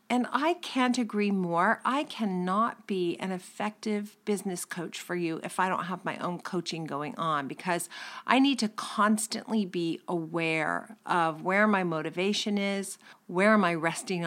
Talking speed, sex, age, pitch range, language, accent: 165 wpm, female, 40-59, 175-220 Hz, English, American